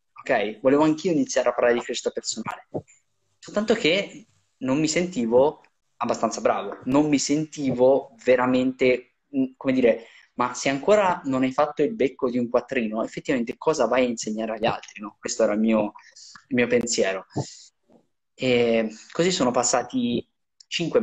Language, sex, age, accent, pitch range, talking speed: Italian, male, 10-29, native, 120-180 Hz, 150 wpm